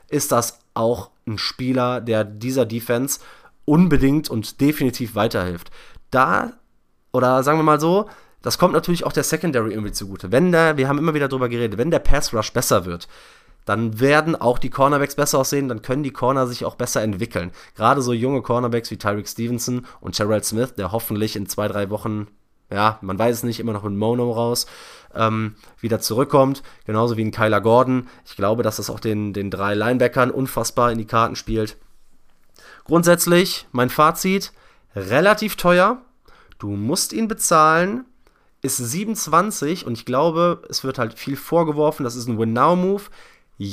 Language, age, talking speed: German, 20-39, 175 wpm